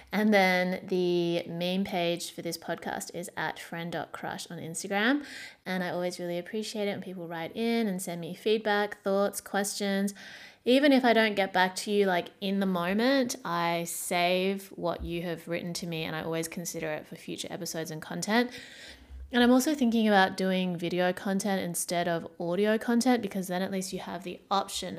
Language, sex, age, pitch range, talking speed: English, female, 20-39, 170-210 Hz, 190 wpm